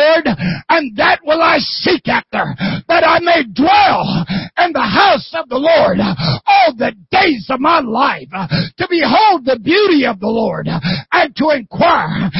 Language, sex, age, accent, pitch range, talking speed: English, male, 60-79, American, 220-330 Hz, 155 wpm